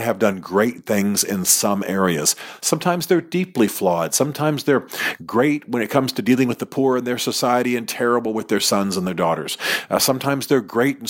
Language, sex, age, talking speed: English, male, 50-69, 205 wpm